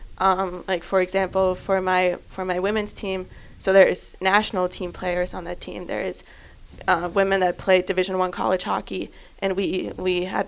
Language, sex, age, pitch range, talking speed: English, female, 20-39, 185-195 Hz, 170 wpm